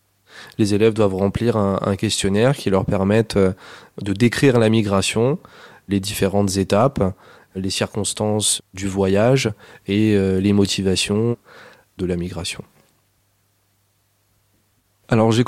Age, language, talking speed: 20-39, French, 110 wpm